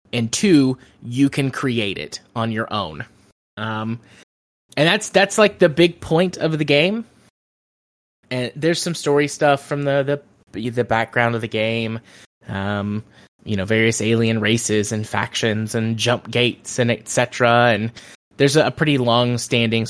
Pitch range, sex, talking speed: 110-130 Hz, male, 155 wpm